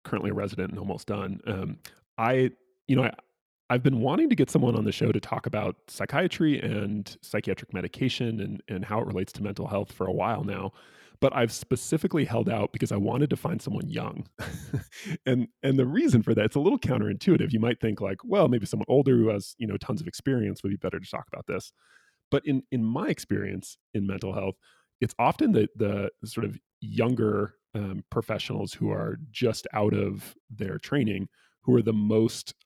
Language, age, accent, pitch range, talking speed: English, 20-39, American, 100-130 Hz, 205 wpm